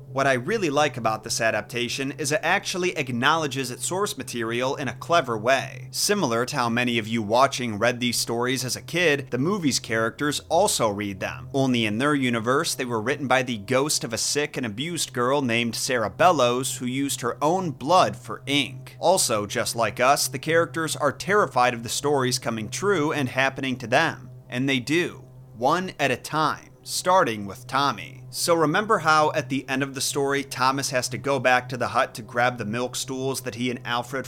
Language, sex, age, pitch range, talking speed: English, male, 30-49, 120-140 Hz, 205 wpm